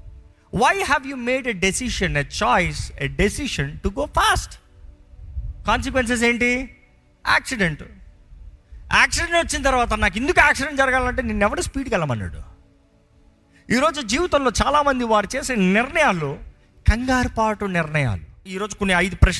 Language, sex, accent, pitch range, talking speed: Telugu, male, native, 135-210 Hz, 190 wpm